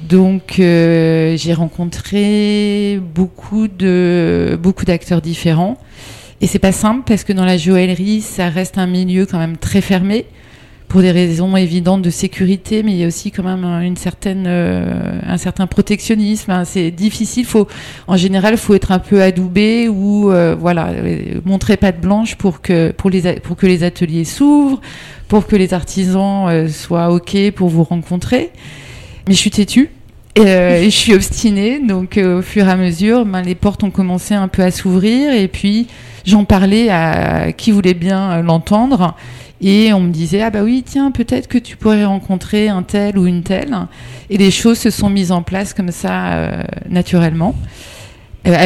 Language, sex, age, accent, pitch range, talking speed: French, female, 30-49, French, 170-205 Hz, 185 wpm